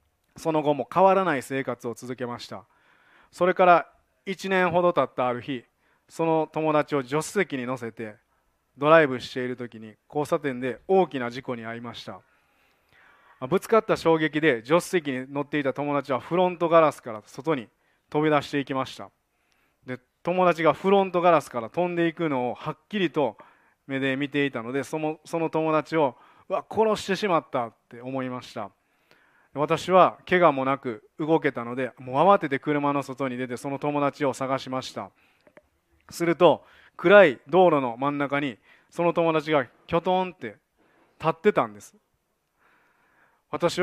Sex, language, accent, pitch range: male, Japanese, native, 130-165 Hz